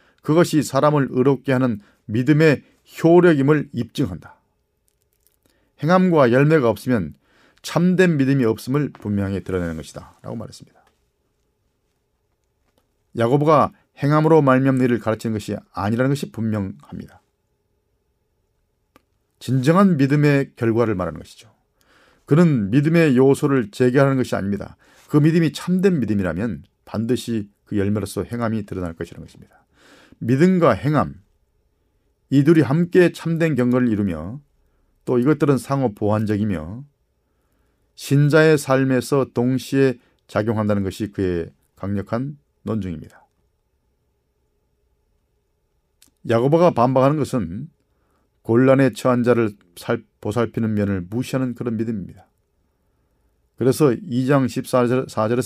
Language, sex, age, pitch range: Korean, male, 40-59, 105-140 Hz